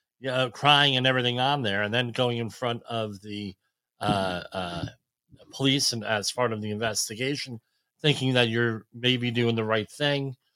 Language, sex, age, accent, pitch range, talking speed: English, male, 40-59, American, 110-135 Hz, 165 wpm